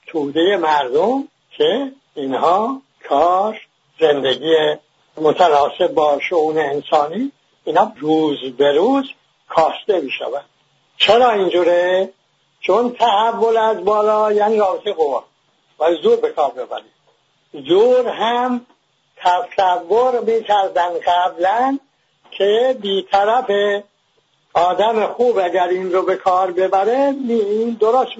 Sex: male